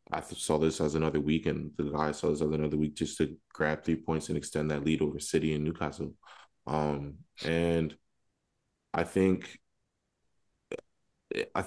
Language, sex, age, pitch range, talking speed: English, male, 20-39, 75-85 Hz, 165 wpm